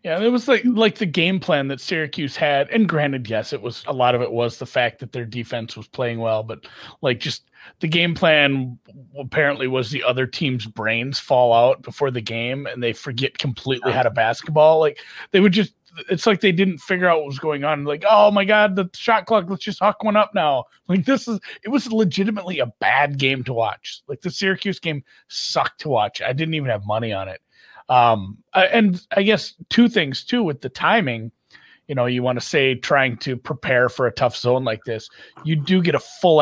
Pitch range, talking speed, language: 120-180 Hz, 220 wpm, English